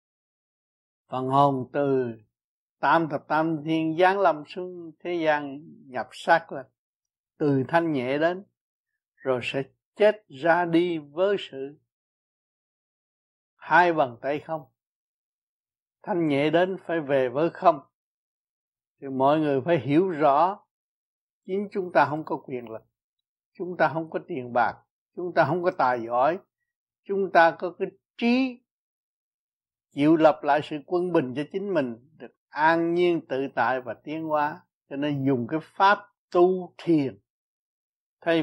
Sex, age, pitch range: male, 60-79, 135-175 Hz